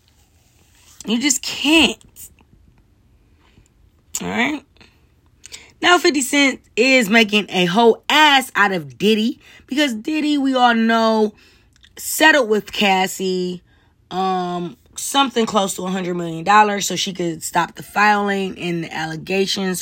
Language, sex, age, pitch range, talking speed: English, female, 20-39, 145-225 Hz, 115 wpm